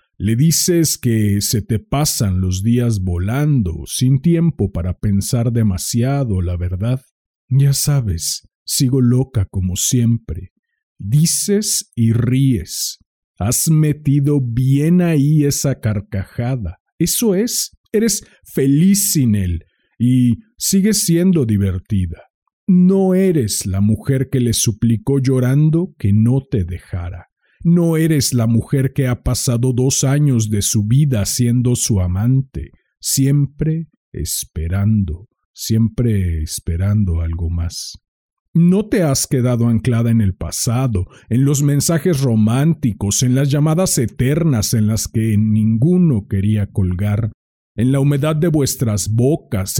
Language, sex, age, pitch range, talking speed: Spanish, male, 50-69, 105-150 Hz, 125 wpm